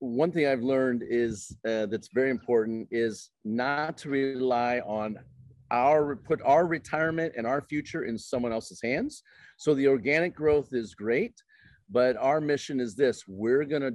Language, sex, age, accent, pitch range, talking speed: English, male, 40-59, American, 115-150 Hz, 165 wpm